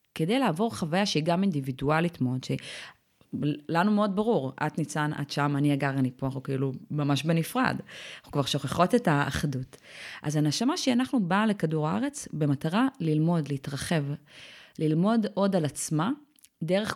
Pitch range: 150-200 Hz